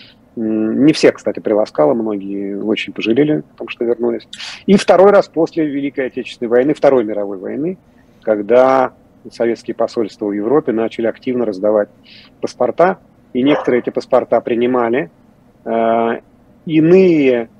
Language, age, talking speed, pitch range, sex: Russian, 40-59, 125 wpm, 110-140 Hz, male